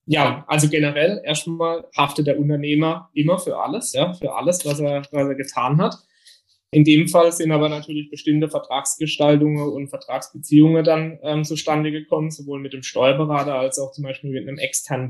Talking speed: 175 wpm